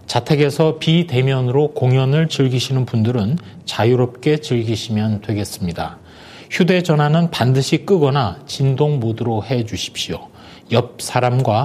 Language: Korean